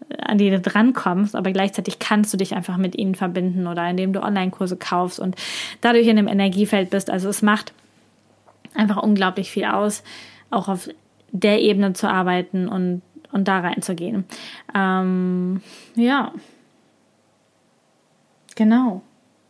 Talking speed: 130 wpm